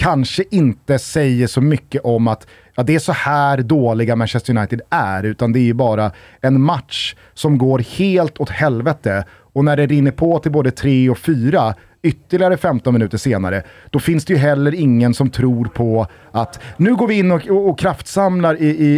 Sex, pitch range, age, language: male, 120-155 Hz, 30-49, Swedish